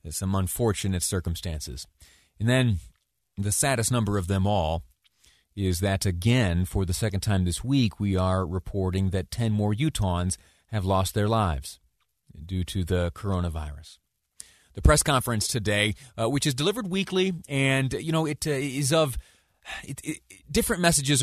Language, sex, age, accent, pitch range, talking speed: English, male, 30-49, American, 95-120 Hz, 155 wpm